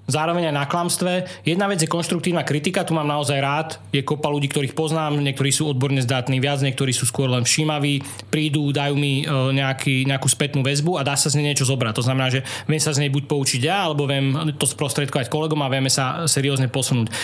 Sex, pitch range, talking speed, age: male, 135-155 Hz, 215 wpm, 20-39